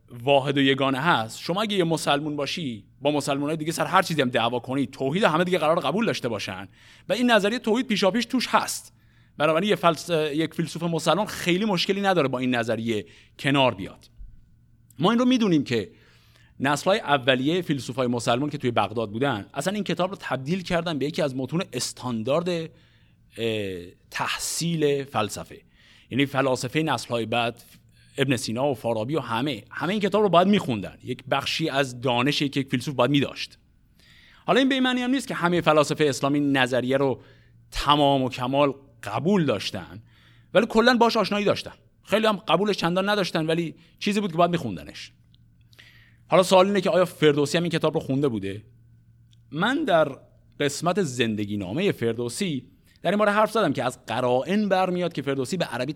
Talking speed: 175 wpm